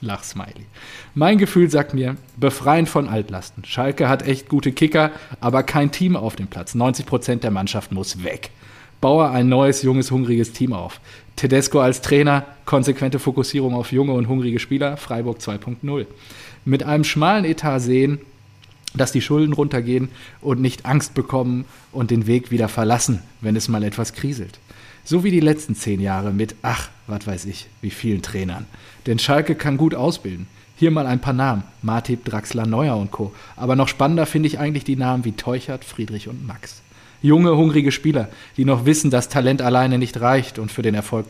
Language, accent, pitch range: German, German, 110-140 Hz